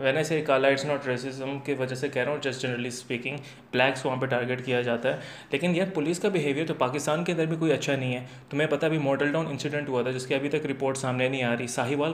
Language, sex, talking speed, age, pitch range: Urdu, male, 265 wpm, 20-39, 130-150 Hz